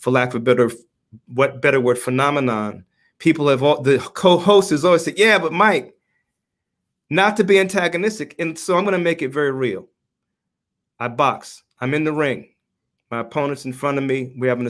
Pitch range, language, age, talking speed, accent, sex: 130-175 Hz, English, 30-49, 185 wpm, American, male